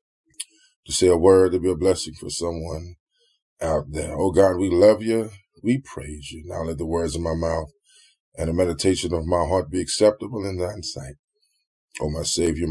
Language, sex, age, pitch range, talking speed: English, male, 20-39, 75-95 Hz, 195 wpm